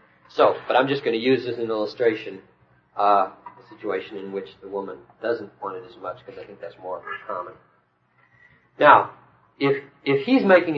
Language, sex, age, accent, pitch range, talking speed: English, male, 40-59, American, 110-155 Hz, 190 wpm